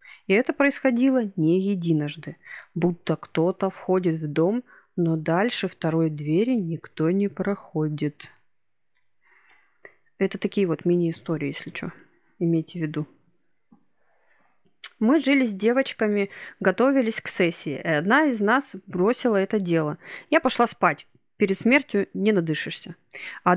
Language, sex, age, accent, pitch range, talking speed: Russian, female, 30-49, native, 175-245 Hz, 120 wpm